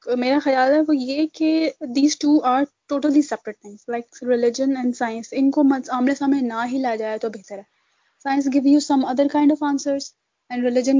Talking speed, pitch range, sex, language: 200 wpm, 245-275 Hz, female, Urdu